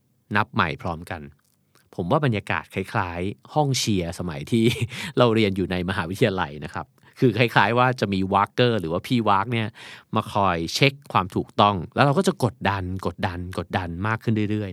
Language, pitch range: Thai, 90-120 Hz